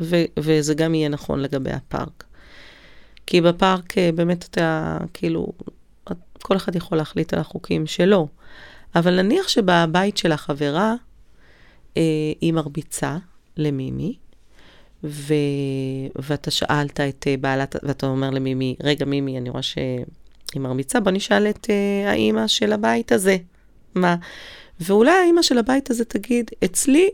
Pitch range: 150-210 Hz